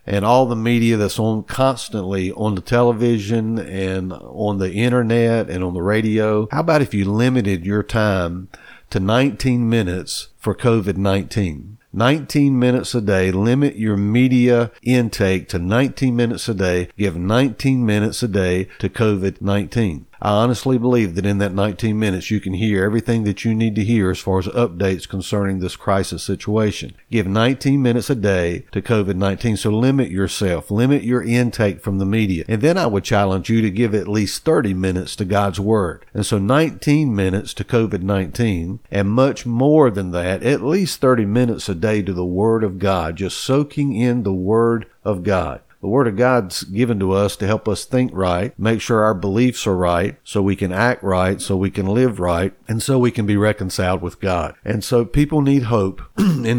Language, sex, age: English, male, 50-69